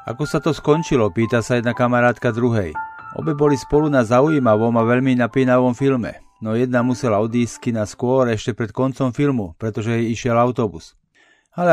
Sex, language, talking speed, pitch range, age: male, Slovak, 170 wpm, 115-135 Hz, 40-59